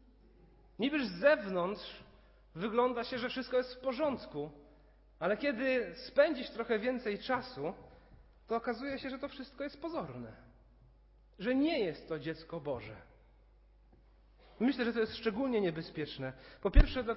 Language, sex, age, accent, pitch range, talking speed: Polish, male, 40-59, native, 155-235 Hz, 135 wpm